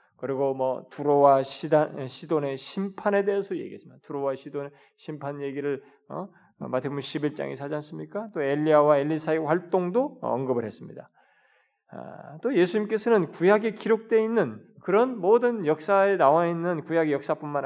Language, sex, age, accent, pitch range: Korean, male, 20-39, native, 140-205 Hz